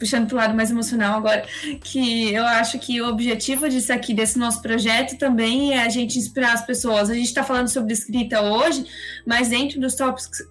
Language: Portuguese